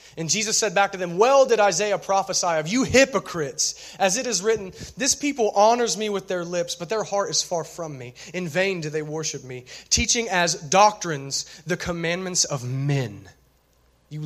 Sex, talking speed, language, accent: male, 190 wpm, English, American